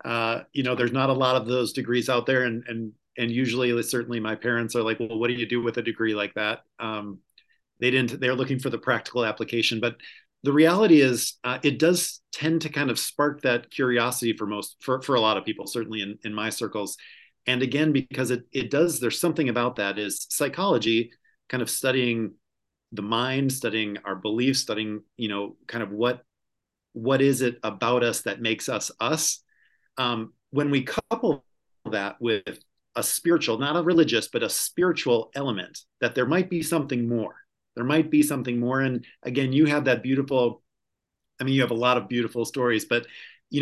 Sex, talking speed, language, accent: male, 200 wpm, English, American